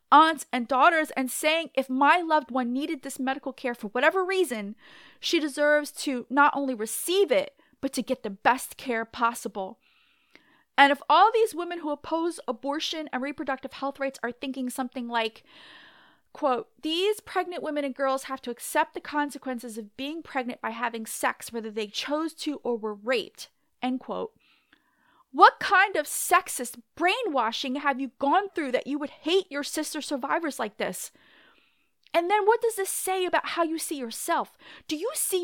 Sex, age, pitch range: female, 30-49, 255-360 Hz